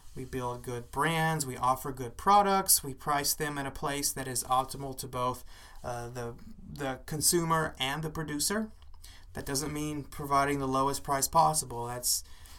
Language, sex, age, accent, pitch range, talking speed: English, male, 30-49, American, 120-155 Hz, 165 wpm